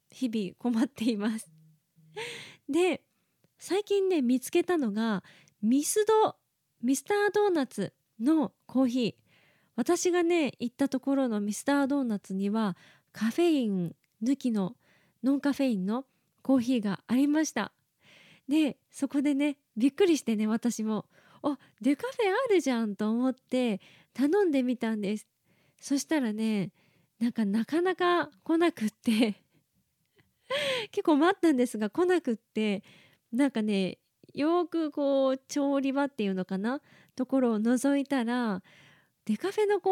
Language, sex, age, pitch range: Japanese, female, 20-39, 220-310 Hz